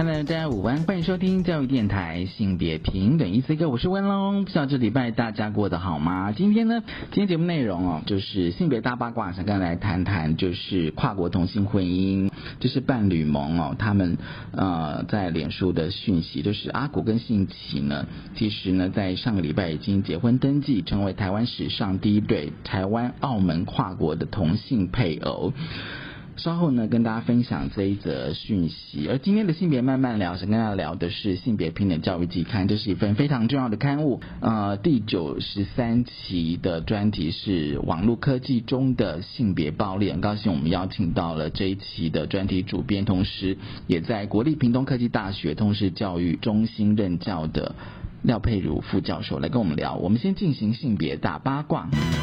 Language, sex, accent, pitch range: Chinese, male, native, 95-125 Hz